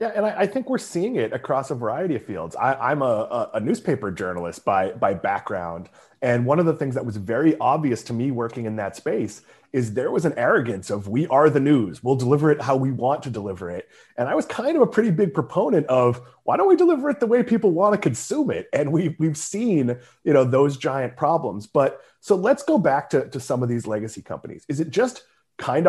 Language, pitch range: English, 120-170 Hz